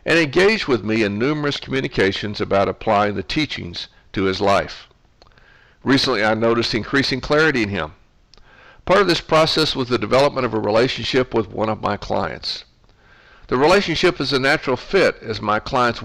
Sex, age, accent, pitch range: male, 60-79, American, 105-140 Hz